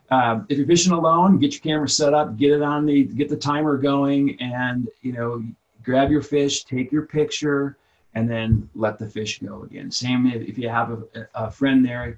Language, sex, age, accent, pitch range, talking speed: English, male, 40-59, American, 120-155 Hz, 210 wpm